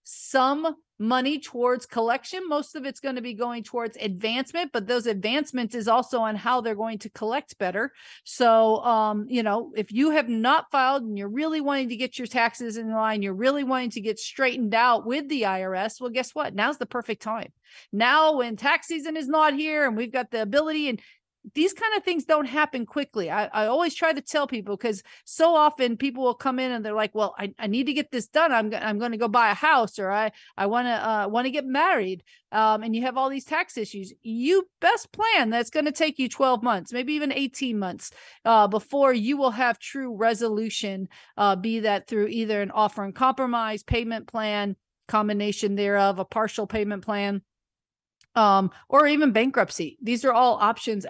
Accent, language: American, English